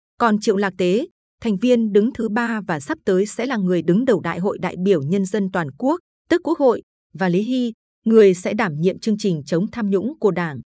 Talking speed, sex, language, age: 235 wpm, female, Vietnamese, 20-39